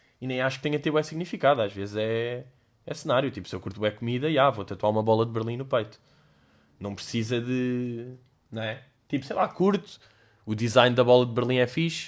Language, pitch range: Portuguese, 95-140 Hz